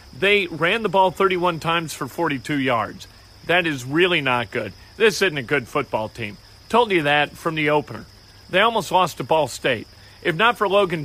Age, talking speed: 40-59, 195 wpm